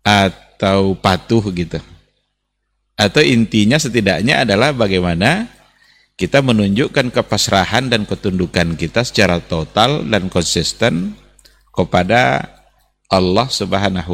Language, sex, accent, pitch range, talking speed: Indonesian, male, native, 85-110 Hz, 90 wpm